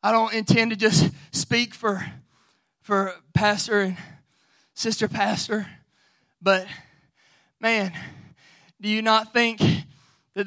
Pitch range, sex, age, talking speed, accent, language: 190-250 Hz, male, 20-39, 110 wpm, American, English